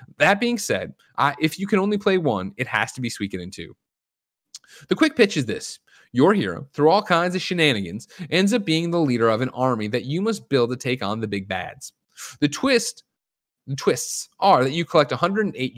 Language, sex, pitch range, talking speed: English, male, 110-170 Hz, 215 wpm